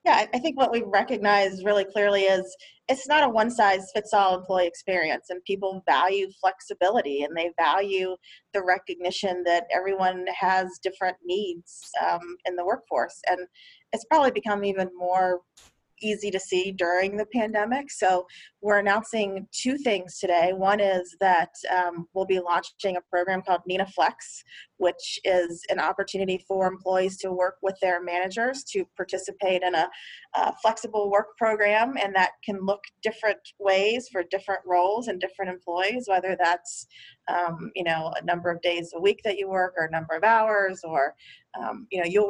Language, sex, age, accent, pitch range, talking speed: English, female, 30-49, American, 180-210 Hz, 165 wpm